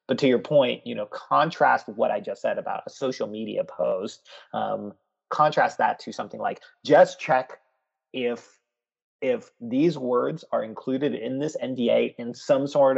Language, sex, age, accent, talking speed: English, male, 30-49, American, 165 wpm